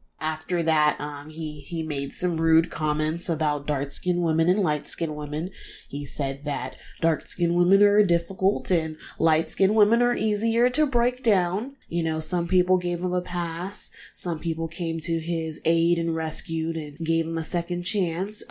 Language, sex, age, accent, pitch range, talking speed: English, female, 20-39, American, 165-210 Hz, 170 wpm